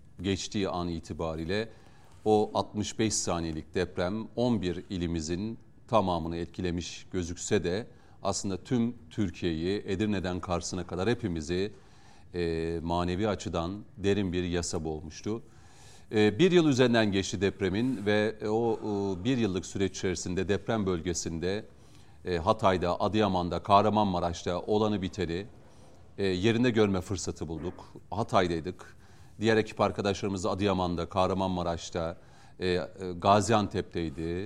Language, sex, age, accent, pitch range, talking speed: Turkish, male, 40-59, native, 85-110 Hz, 105 wpm